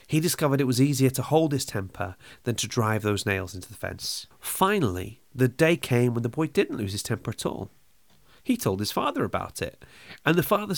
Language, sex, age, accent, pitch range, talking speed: English, male, 30-49, British, 105-145 Hz, 215 wpm